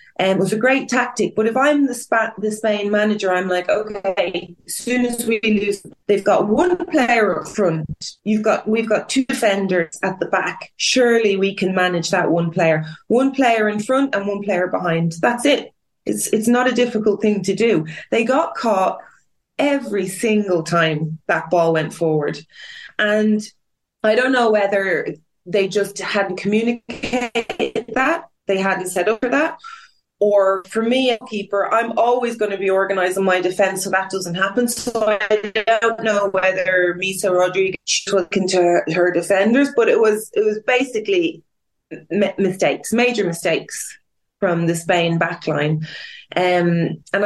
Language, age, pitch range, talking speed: English, 30-49, 180-230 Hz, 170 wpm